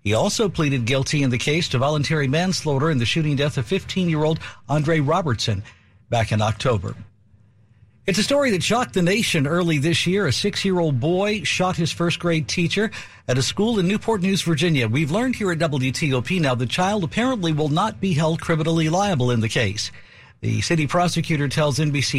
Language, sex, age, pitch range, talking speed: English, male, 60-79, 120-170 Hz, 185 wpm